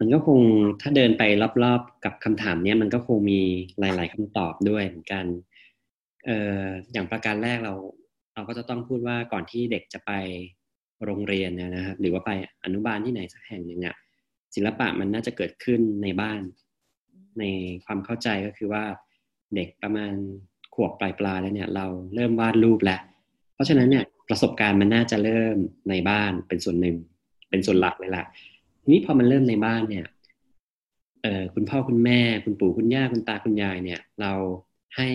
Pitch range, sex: 95-115 Hz, male